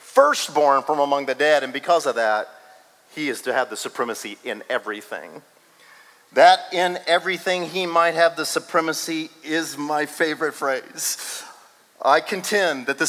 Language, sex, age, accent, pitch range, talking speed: English, male, 40-59, American, 160-205 Hz, 150 wpm